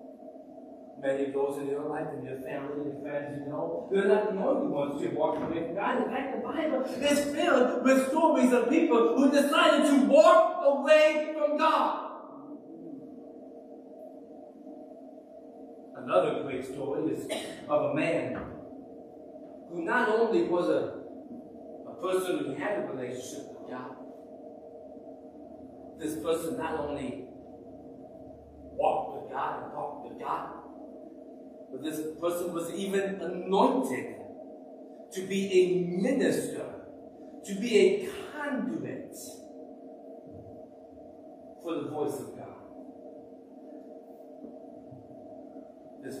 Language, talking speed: English, 115 wpm